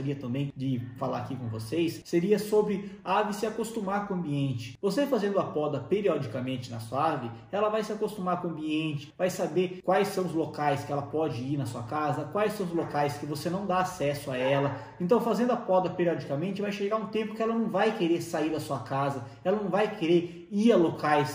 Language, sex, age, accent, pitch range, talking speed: Portuguese, male, 20-39, Brazilian, 145-210 Hz, 220 wpm